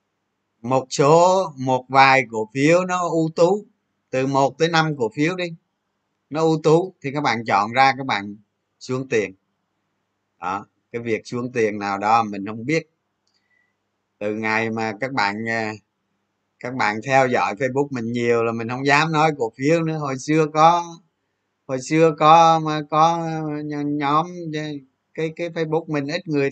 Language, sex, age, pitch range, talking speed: Vietnamese, male, 20-39, 110-150 Hz, 165 wpm